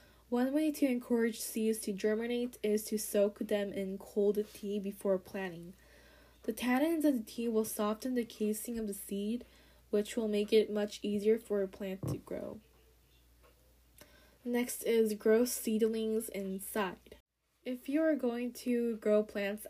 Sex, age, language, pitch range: female, 10-29, Korean, 200-230 Hz